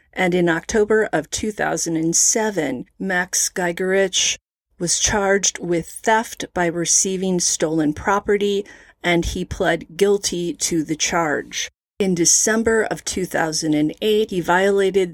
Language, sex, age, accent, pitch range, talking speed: English, female, 30-49, American, 165-200 Hz, 110 wpm